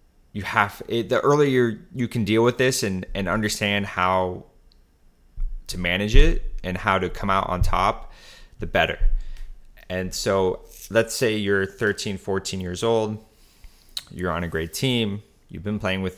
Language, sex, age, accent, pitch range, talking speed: English, male, 30-49, American, 90-105 Hz, 165 wpm